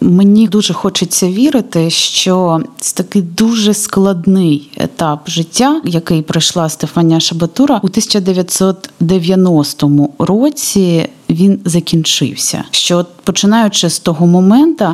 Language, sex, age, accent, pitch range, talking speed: Ukrainian, female, 20-39, native, 165-205 Hz, 105 wpm